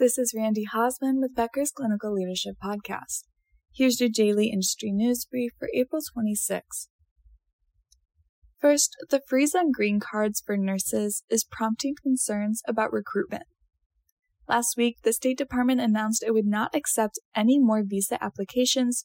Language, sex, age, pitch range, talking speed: English, female, 10-29, 200-250 Hz, 140 wpm